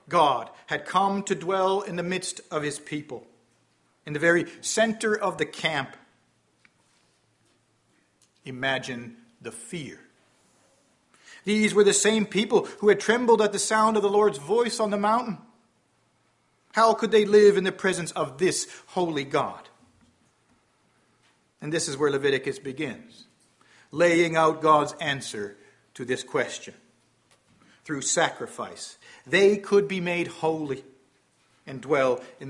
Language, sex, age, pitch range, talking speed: English, male, 50-69, 150-195 Hz, 135 wpm